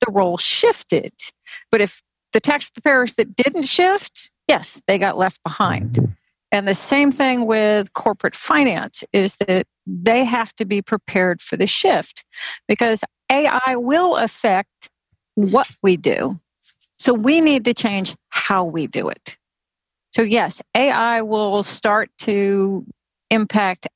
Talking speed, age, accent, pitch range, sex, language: 140 wpm, 50-69, American, 185-235 Hz, female, English